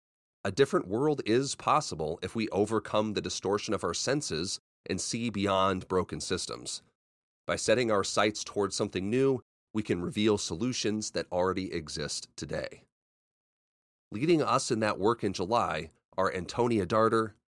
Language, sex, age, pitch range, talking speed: English, male, 30-49, 90-115 Hz, 150 wpm